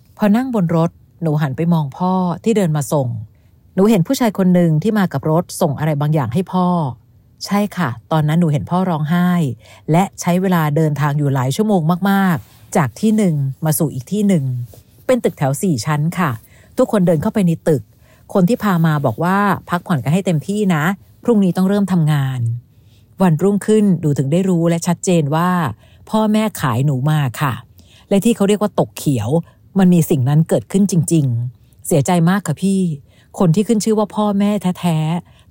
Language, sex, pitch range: Thai, female, 140-190 Hz